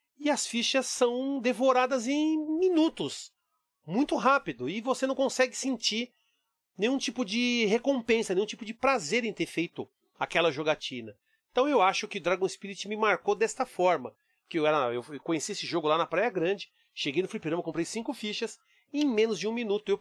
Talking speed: 180 wpm